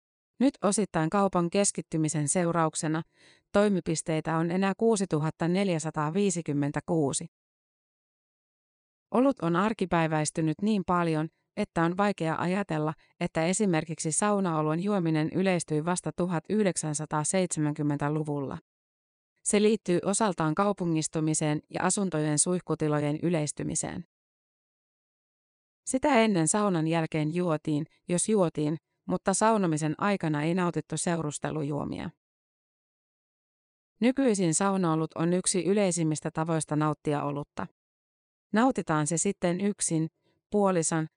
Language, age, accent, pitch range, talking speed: Finnish, 30-49, native, 155-195 Hz, 85 wpm